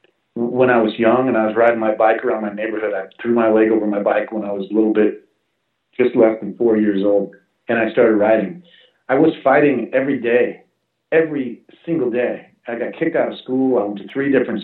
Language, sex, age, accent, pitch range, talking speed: English, male, 40-59, American, 110-130 Hz, 225 wpm